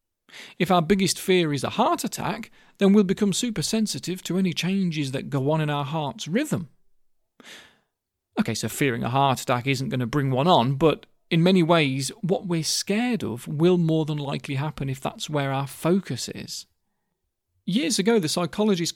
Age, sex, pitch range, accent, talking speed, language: 40-59, male, 145-205 Hz, British, 185 wpm, English